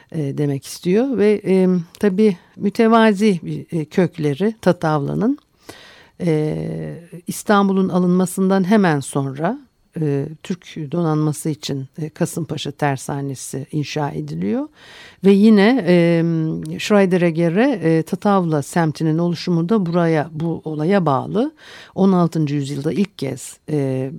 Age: 60-79